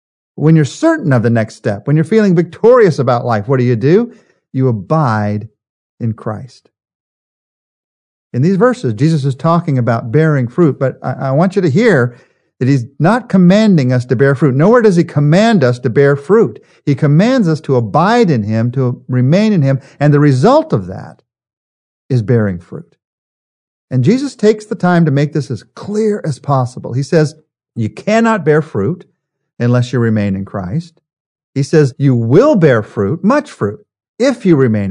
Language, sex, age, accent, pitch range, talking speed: English, male, 50-69, American, 125-180 Hz, 180 wpm